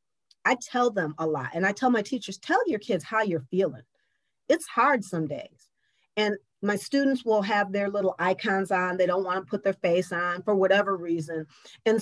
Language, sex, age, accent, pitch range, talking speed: English, female, 40-59, American, 175-225 Hz, 205 wpm